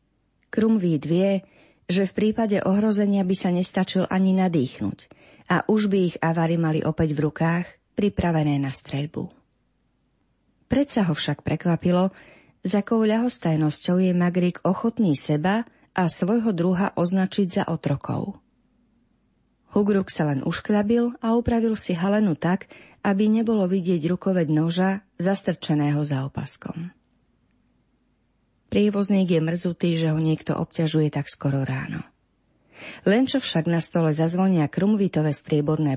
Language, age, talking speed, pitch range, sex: Slovak, 30-49, 125 wpm, 155-200 Hz, female